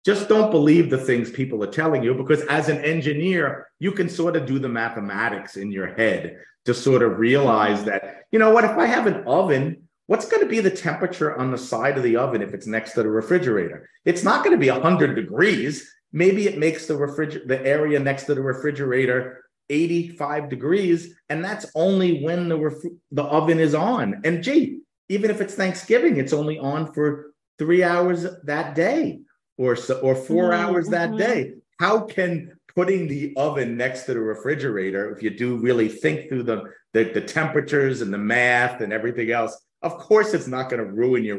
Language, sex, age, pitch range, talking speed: English, male, 40-59, 115-170 Hz, 200 wpm